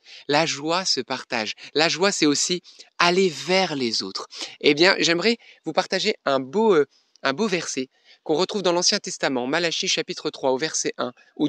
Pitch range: 130-185 Hz